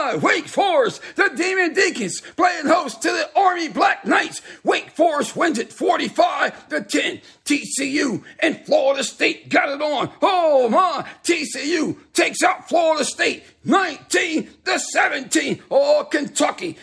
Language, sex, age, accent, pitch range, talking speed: English, male, 50-69, American, 285-340 Hz, 135 wpm